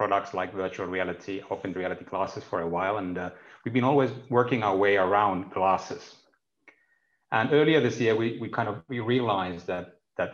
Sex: male